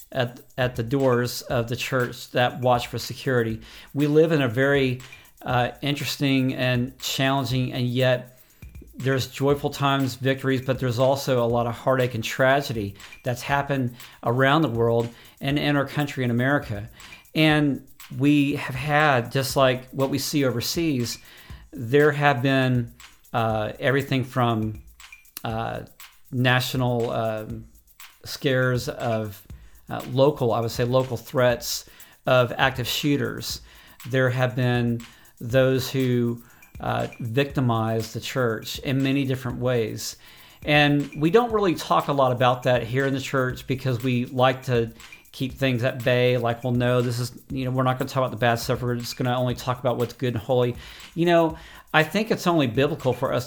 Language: English